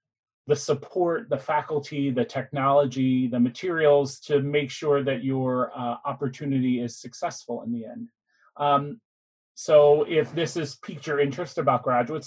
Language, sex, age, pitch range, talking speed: English, male, 30-49, 135-165 Hz, 145 wpm